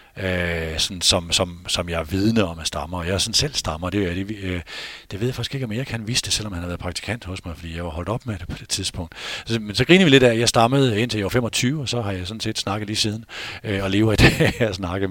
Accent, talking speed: native, 300 wpm